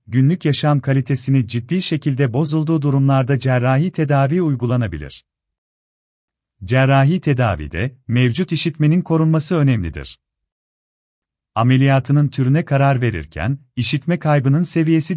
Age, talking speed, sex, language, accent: 40-59, 90 wpm, male, Turkish, native